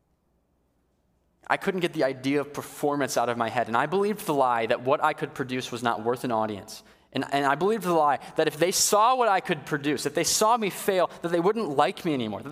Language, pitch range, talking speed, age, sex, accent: English, 115-180 Hz, 250 wpm, 20-39, male, American